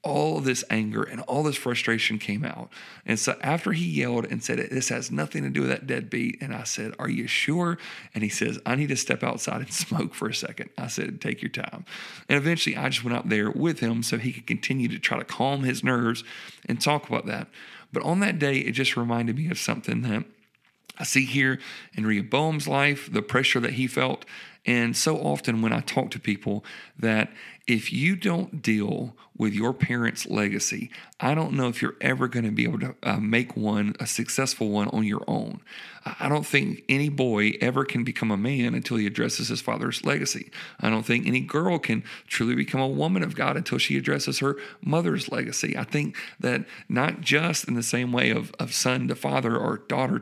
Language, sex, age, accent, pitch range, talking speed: English, male, 40-59, American, 110-145 Hz, 215 wpm